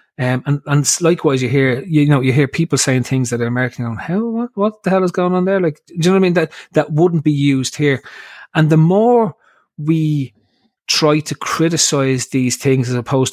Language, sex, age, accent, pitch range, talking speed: English, male, 30-49, Irish, 130-155 Hz, 230 wpm